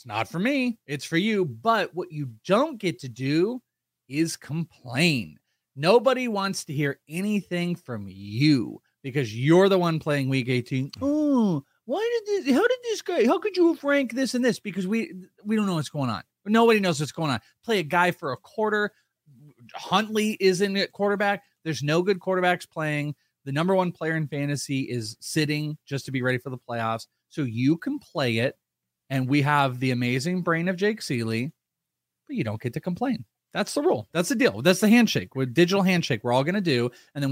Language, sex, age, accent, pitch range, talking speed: English, male, 30-49, American, 125-185 Hz, 205 wpm